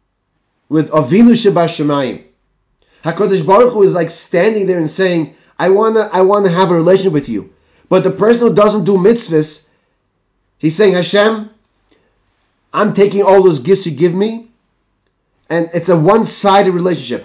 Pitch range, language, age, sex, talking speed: 150-195 Hz, English, 30-49, male, 150 wpm